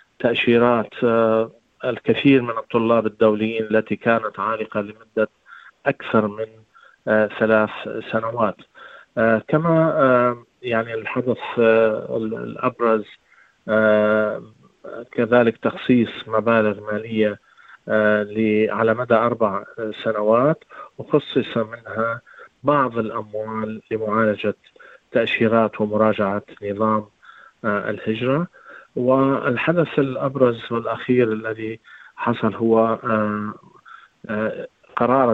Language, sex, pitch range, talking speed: Arabic, male, 105-115 Hz, 70 wpm